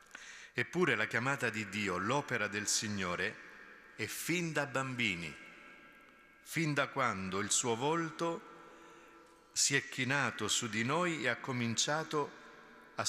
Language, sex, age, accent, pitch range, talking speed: Italian, male, 50-69, native, 105-130 Hz, 130 wpm